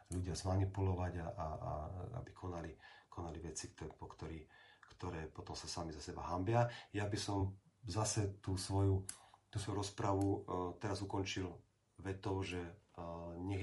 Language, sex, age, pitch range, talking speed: Slovak, male, 40-59, 90-105 Hz, 155 wpm